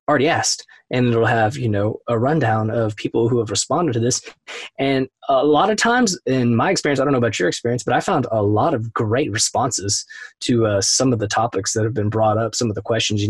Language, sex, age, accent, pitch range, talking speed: English, male, 20-39, American, 115-150 Hz, 245 wpm